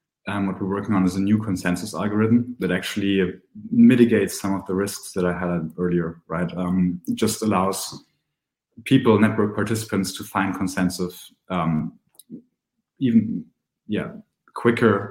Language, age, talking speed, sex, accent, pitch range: English, 20-39, 145 wpm, male, German, 95-110 Hz